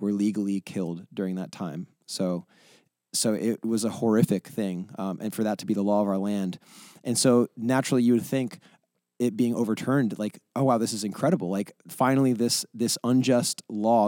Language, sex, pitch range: English, male, 105-120 Hz